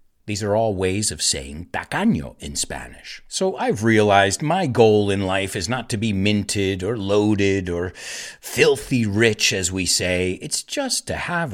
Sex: male